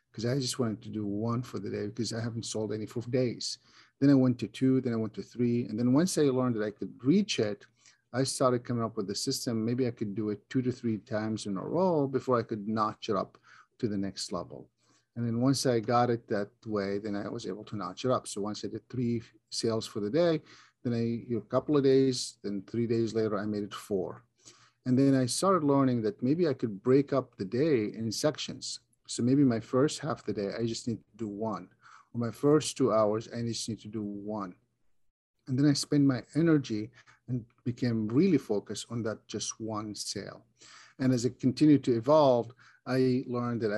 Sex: male